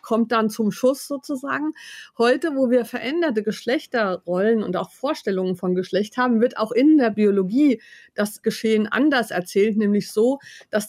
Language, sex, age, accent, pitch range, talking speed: German, female, 50-69, German, 210-255 Hz, 155 wpm